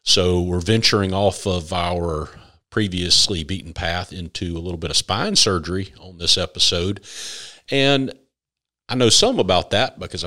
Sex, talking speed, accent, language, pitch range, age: male, 150 wpm, American, English, 85-100 Hz, 40-59